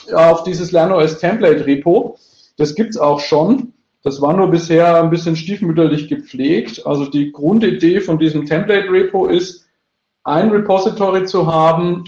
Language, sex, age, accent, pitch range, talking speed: English, male, 40-59, German, 150-180 Hz, 135 wpm